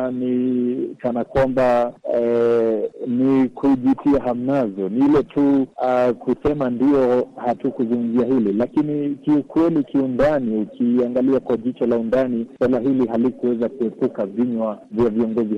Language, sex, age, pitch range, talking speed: Swahili, male, 50-69, 110-130 Hz, 120 wpm